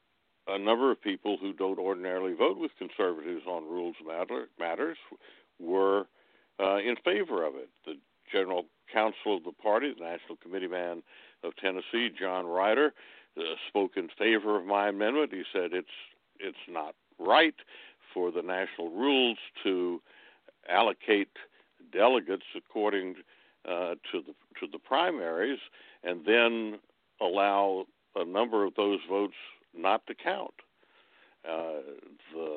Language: English